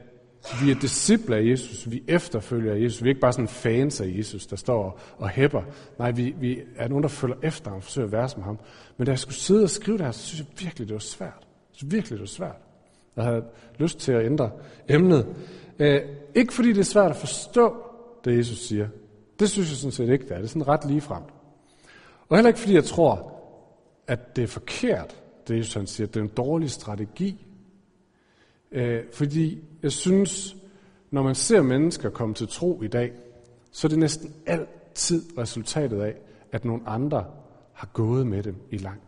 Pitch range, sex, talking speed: 115-160 Hz, male, 205 wpm